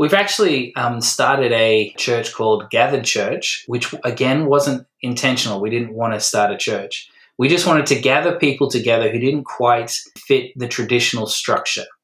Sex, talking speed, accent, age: male, 170 wpm, Australian, 20-39